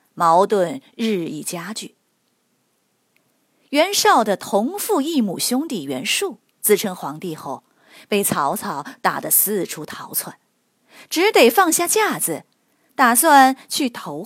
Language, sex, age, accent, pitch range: Chinese, female, 30-49, native, 180-295 Hz